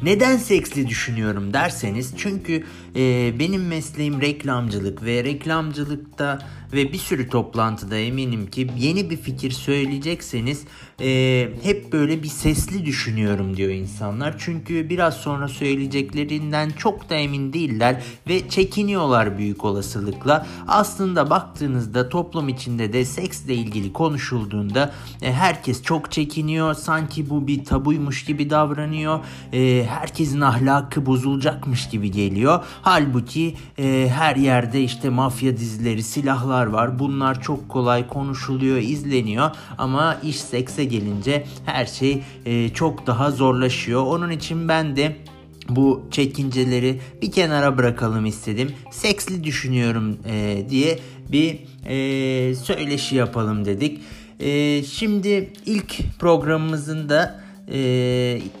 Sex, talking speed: male, 115 wpm